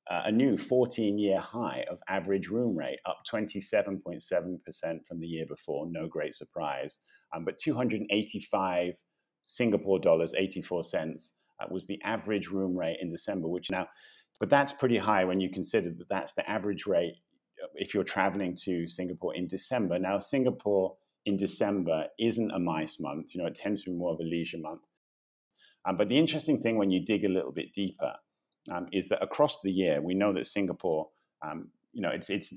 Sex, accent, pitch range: male, British, 85-105 Hz